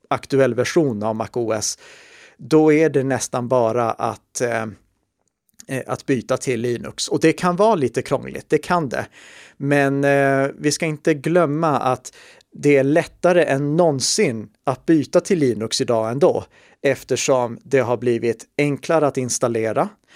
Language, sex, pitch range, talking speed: Swedish, male, 120-145 Hz, 145 wpm